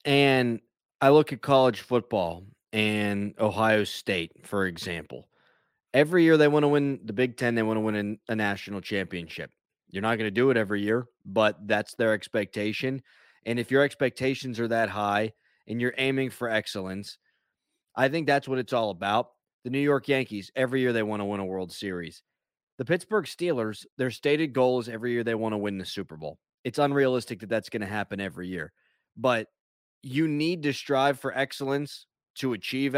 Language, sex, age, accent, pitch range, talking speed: English, male, 30-49, American, 105-140 Hz, 190 wpm